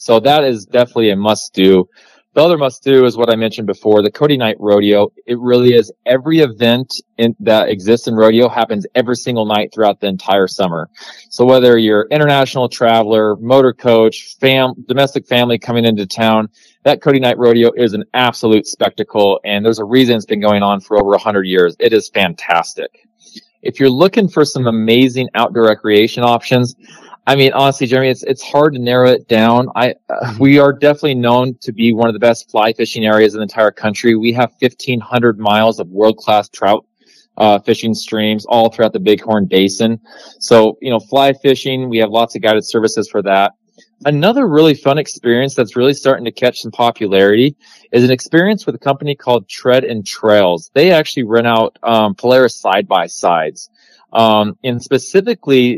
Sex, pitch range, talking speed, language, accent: male, 110-130 Hz, 185 wpm, English, American